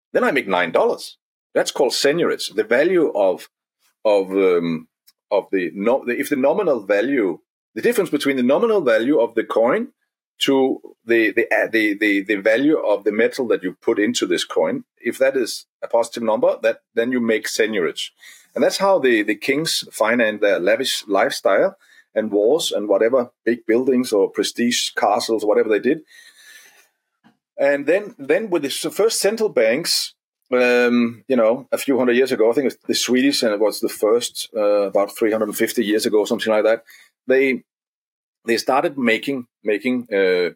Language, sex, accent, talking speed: English, male, Danish, 185 wpm